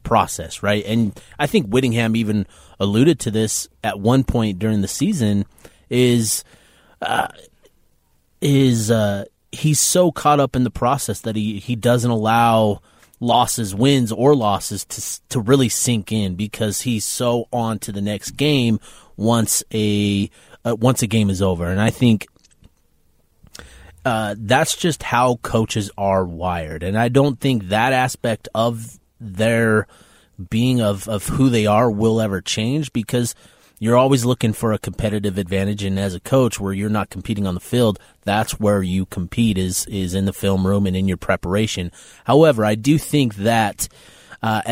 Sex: male